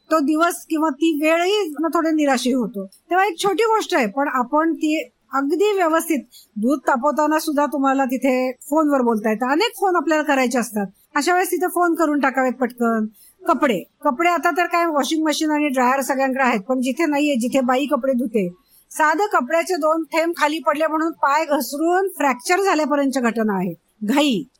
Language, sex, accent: Marathi, female, native